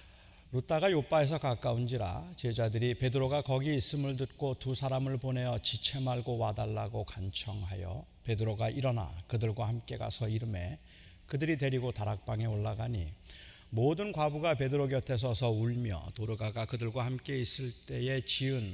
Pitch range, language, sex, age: 105-135 Hz, Korean, male, 40-59